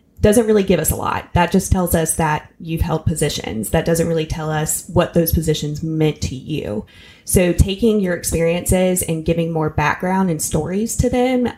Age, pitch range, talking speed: 20-39, 155-175 Hz, 190 wpm